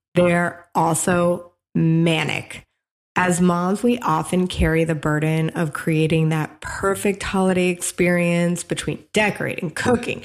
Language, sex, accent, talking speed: English, female, American, 110 wpm